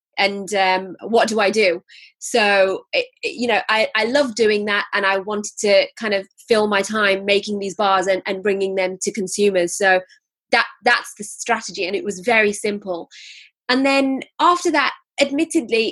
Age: 20-39